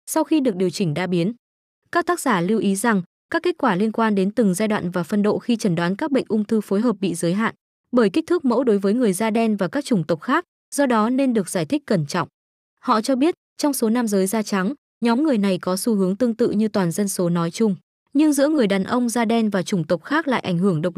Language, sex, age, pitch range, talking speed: Vietnamese, female, 20-39, 195-255 Hz, 275 wpm